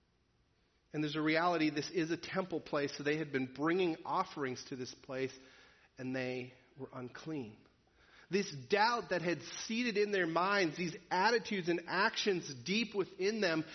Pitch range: 145-220 Hz